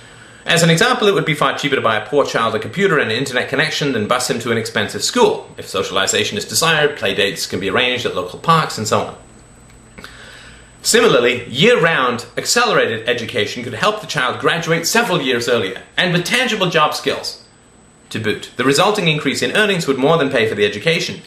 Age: 30-49